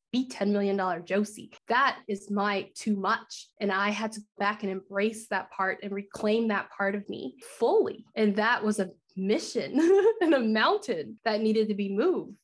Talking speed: 190 wpm